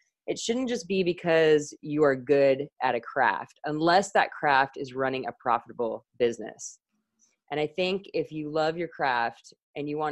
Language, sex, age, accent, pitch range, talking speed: English, female, 20-39, American, 145-175 Hz, 180 wpm